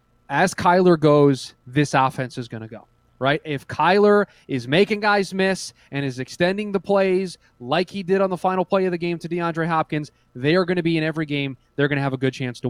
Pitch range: 140-185 Hz